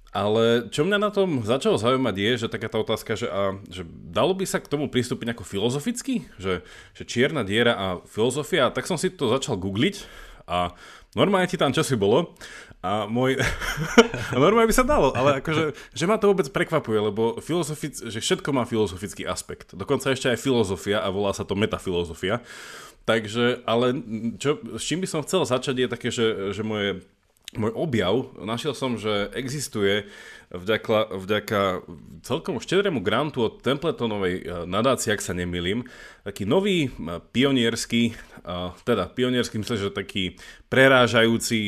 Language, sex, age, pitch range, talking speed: Slovak, male, 20-39, 100-135 Hz, 160 wpm